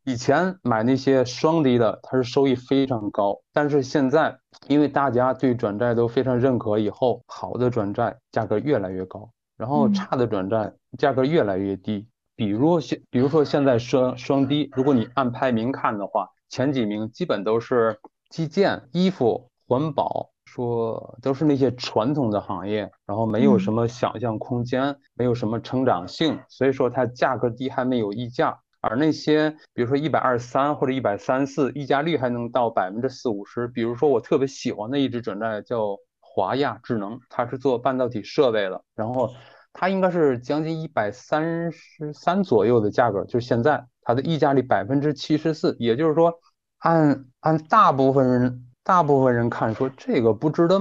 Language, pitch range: Chinese, 115-145 Hz